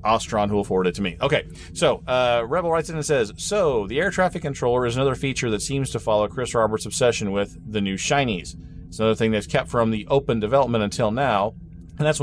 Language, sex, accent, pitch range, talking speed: English, male, American, 100-125 Hz, 225 wpm